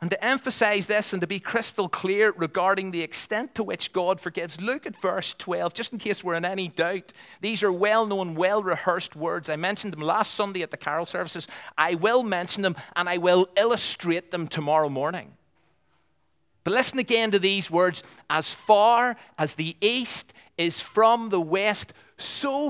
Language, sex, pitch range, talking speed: English, male, 140-200 Hz, 180 wpm